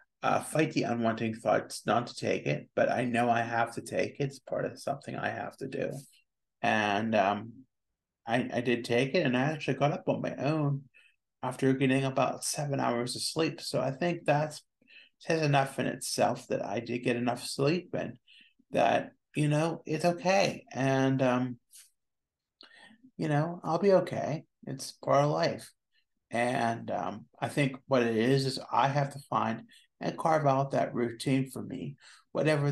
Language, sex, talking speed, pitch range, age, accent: English, male, 180 wpm, 120-150 Hz, 30-49, American